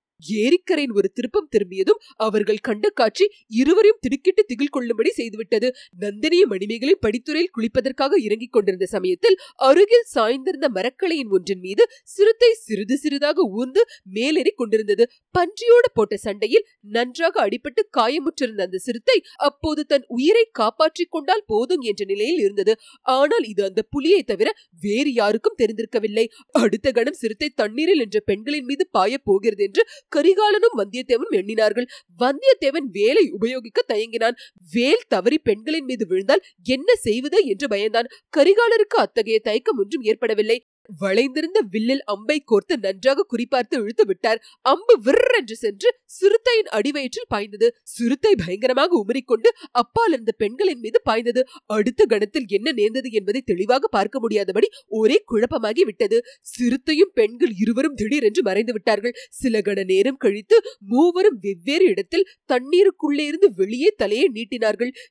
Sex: female